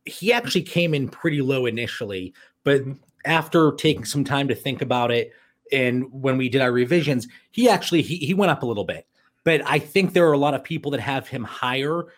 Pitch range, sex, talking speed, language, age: 125-155 Hz, male, 215 wpm, English, 30-49